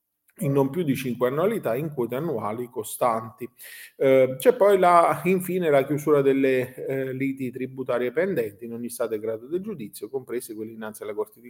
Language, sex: Italian, male